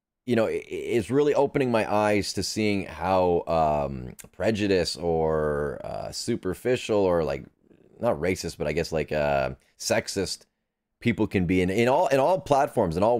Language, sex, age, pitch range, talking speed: English, male, 30-49, 95-130 Hz, 165 wpm